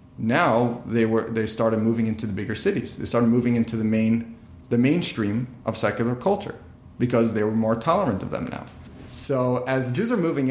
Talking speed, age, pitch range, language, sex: 195 wpm, 30-49, 115-130 Hz, English, male